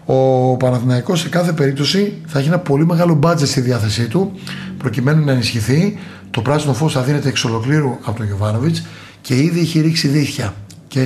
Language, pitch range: Greek, 120-155 Hz